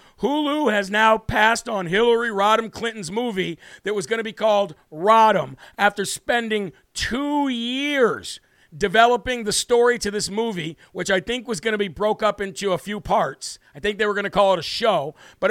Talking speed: 195 wpm